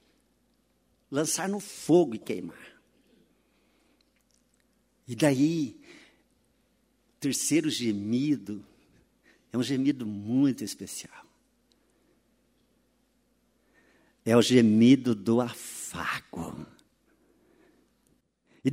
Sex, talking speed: male, 65 wpm